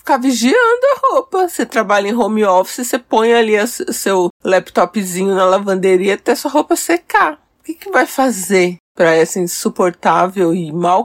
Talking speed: 170 wpm